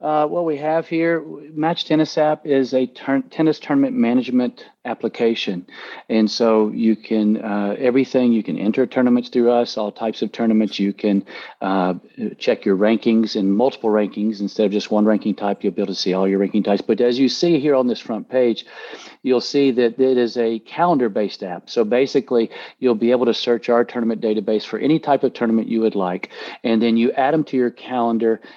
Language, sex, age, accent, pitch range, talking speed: English, male, 50-69, American, 105-125 Hz, 205 wpm